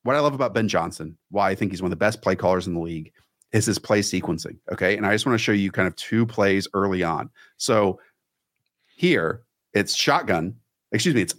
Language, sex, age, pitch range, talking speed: English, male, 40-59, 100-130 Hz, 230 wpm